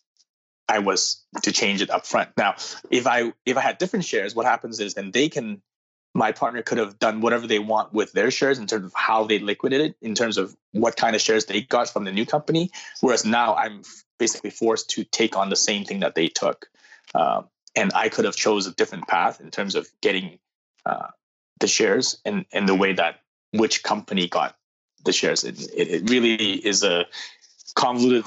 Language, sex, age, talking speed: English, male, 20-39, 210 wpm